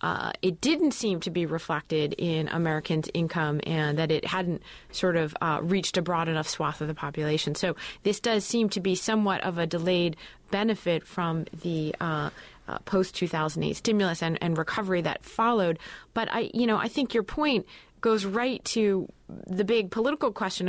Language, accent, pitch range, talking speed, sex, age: English, American, 170-205 Hz, 180 wpm, female, 30-49